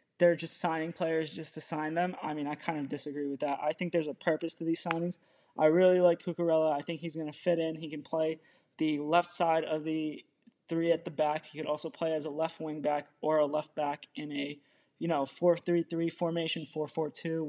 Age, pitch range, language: 20-39, 150-170 Hz, English